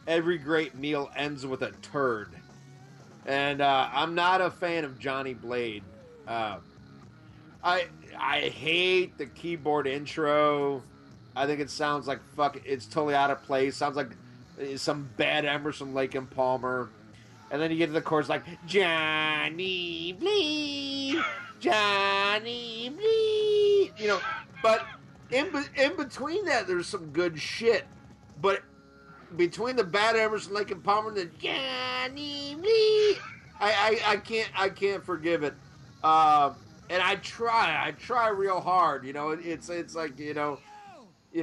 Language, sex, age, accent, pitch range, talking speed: English, male, 30-49, American, 145-215 Hz, 145 wpm